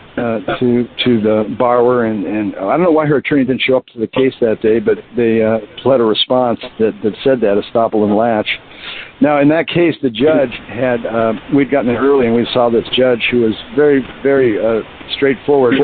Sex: male